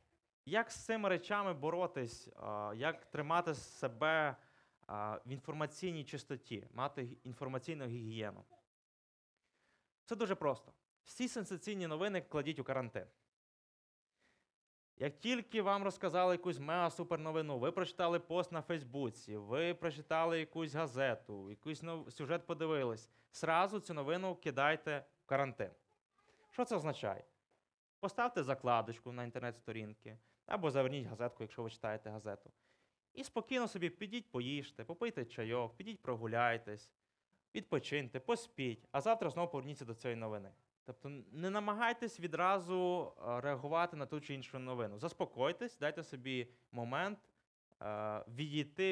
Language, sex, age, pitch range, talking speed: Ukrainian, male, 20-39, 120-175 Hz, 115 wpm